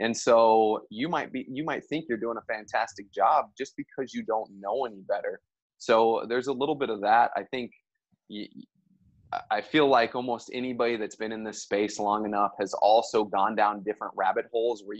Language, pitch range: English, 105-130 Hz